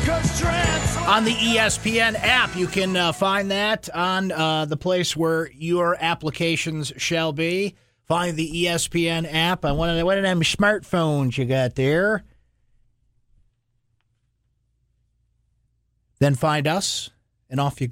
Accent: American